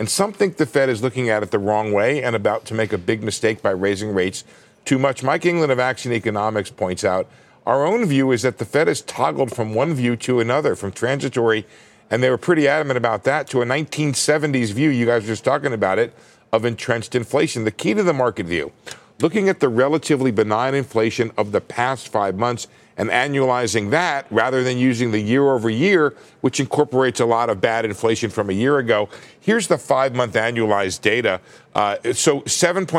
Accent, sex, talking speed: American, male, 205 wpm